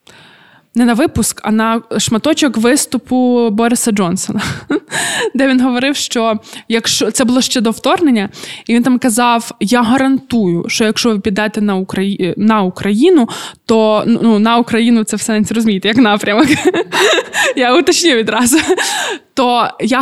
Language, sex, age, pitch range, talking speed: Ukrainian, female, 20-39, 210-250 Hz, 145 wpm